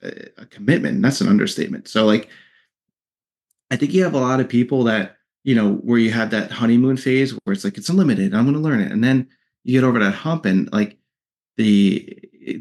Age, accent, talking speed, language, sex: 30-49, American, 210 wpm, English, male